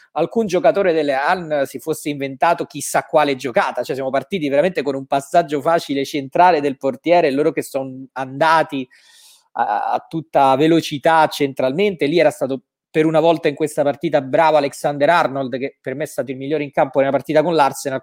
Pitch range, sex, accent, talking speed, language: 135-160 Hz, male, native, 180 wpm, Italian